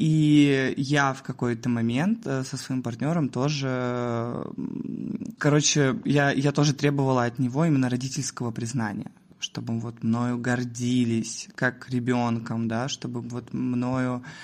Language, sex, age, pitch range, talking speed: Russian, male, 20-39, 125-145 Hz, 120 wpm